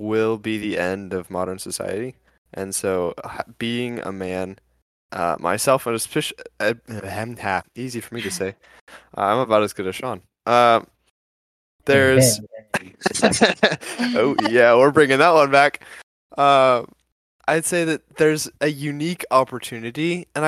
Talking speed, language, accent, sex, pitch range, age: 135 wpm, English, American, male, 95-125 Hz, 10-29